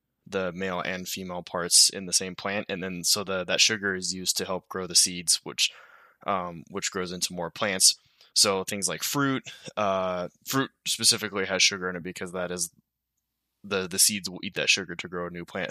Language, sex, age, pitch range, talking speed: English, male, 20-39, 90-105 Hz, 210 wpm